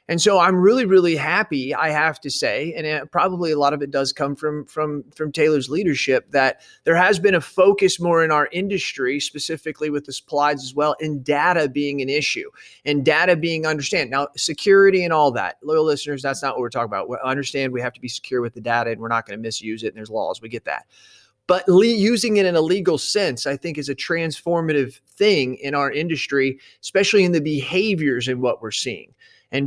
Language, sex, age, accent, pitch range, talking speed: English, male, 30-49, American, 135-170 Hz, 225 wpm